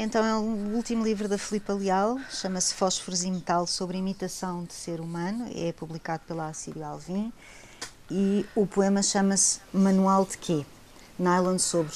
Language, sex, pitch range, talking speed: Portuguese, female, 160-195 Hz, 160 wpm